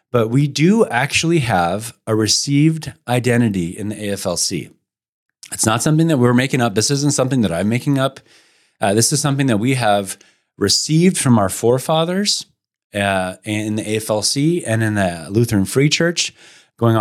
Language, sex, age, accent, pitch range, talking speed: English, male, 30-49, American, 105-135 Hz, 165 wpm